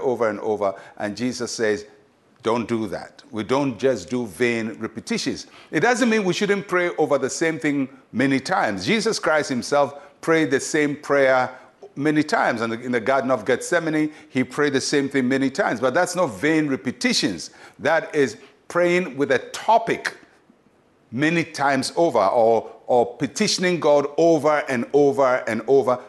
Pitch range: 125-170 Hz